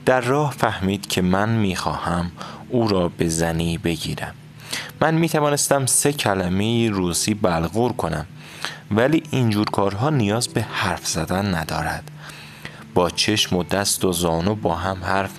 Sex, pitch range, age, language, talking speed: male, 85-120 Hz, 30-49, Persian, 145 wpm